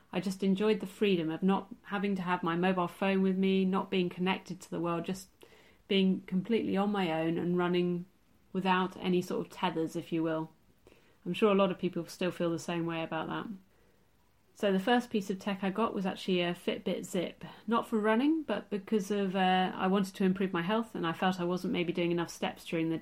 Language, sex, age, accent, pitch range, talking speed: English, female, 30-49, British, 175-205 Hz, 225 wpm